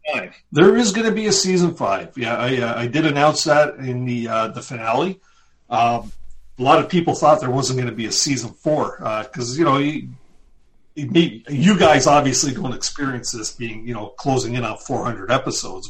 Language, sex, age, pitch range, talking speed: English, male, 40-59, 110-135 Hz, 200 wpm